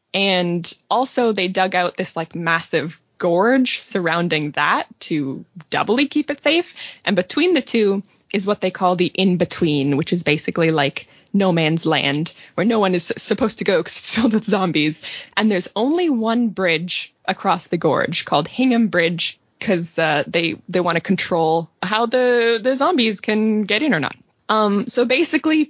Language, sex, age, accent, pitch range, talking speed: English, female, 20-39, American, 175-250 Hz, 175 wpm